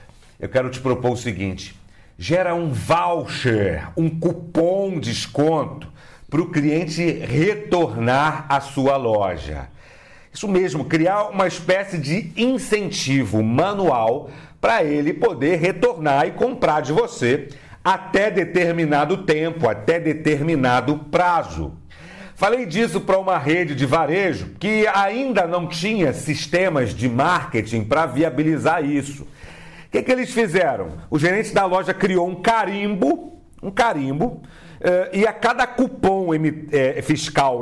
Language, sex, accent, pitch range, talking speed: Portuguese, male, Brazilian, 135-190 Hz, 125 wpm